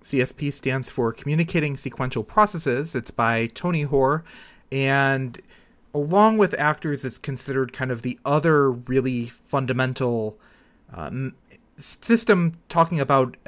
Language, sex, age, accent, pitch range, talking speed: English, male, 30-49, American, 125-160 Hz, 115 wpm